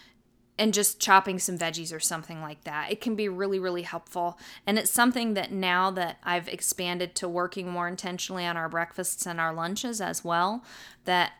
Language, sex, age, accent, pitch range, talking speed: English, female, 20-39, American, 170-185 Hz, 190 wpm